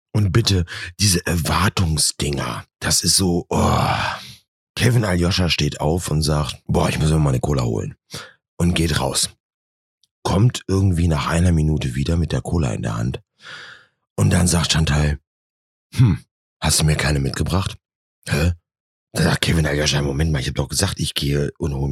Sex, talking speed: male, 170 wpm